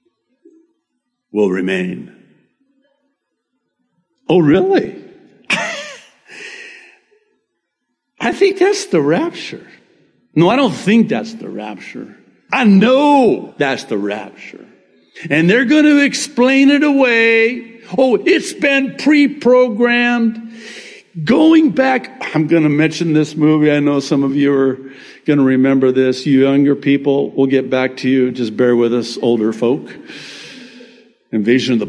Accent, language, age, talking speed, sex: American, English, 60-79, 125 wpm, male